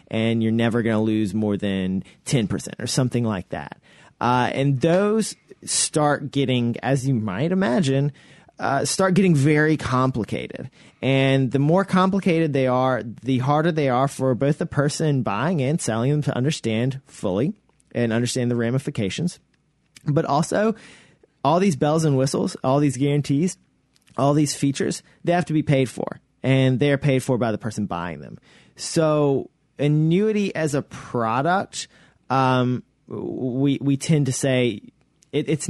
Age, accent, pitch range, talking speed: 30-49, American, 115-150 Hz, 160 wpm